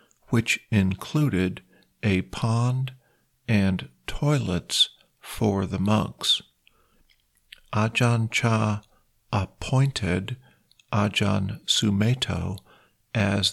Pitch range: 100-120 Hz